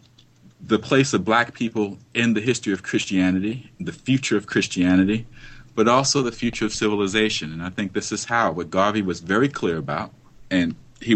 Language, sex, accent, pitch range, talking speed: English, male, American, 95-120 Hz, 185 wpm